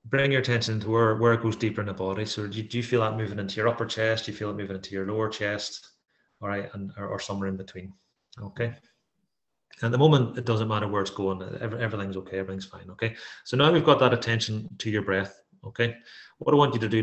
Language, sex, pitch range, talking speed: English, male, 100-115 Hz, 255 wpm